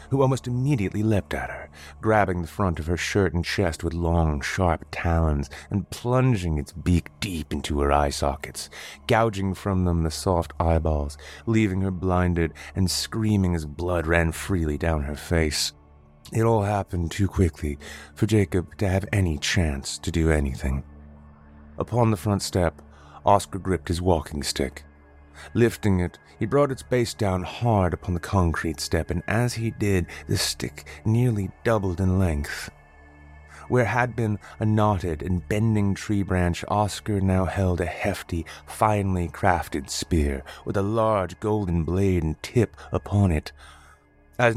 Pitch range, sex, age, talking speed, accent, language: 75-105 Hz, male, 30-49, 160 wpm, American, English